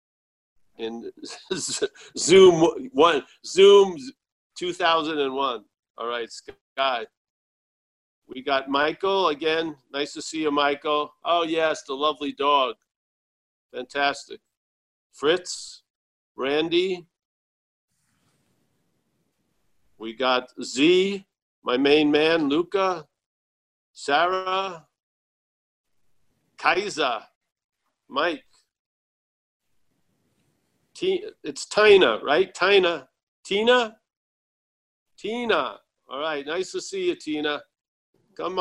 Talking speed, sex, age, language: 75 wpm, male, 50-69, English